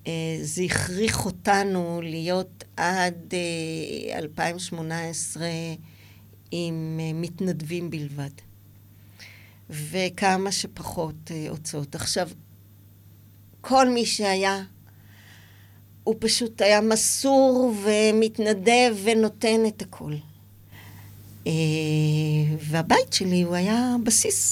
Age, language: 50-69, Hebrew